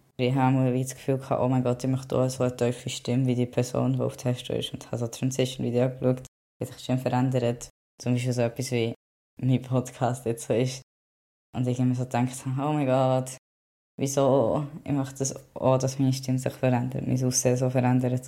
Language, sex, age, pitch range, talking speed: German, female, 20-39, 125-145 Hz, 220 wpm